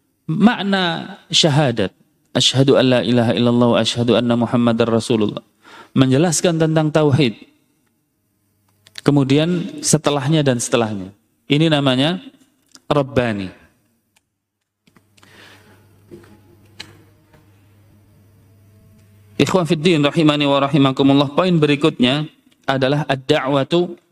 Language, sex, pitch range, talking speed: Indonesian, male, 110-155 Hz, 75 wpm